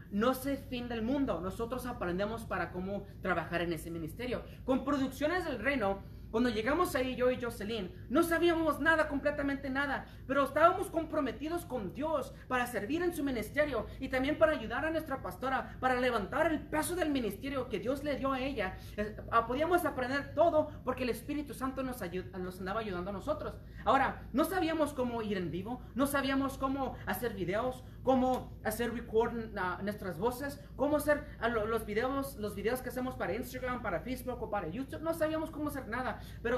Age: 30-49